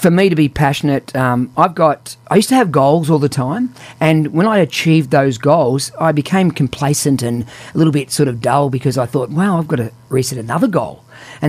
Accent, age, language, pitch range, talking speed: Australian, 40-59, English, 125-160 Hz, 225 wpm